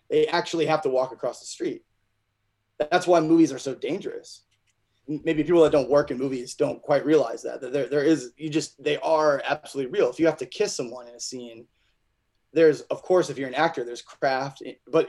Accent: American